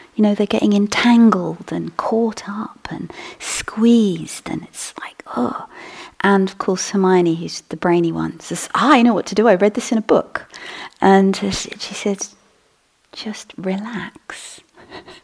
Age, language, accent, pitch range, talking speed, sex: 40-59, English, British, 180-225 Hz, 160 wpm, female